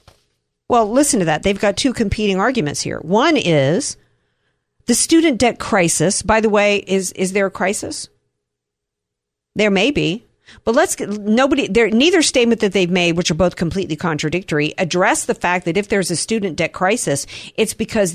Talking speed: 180 wpm